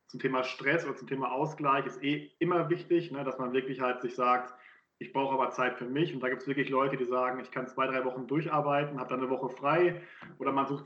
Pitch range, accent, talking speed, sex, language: 125-140 Hz, German, 255 wpm, male, German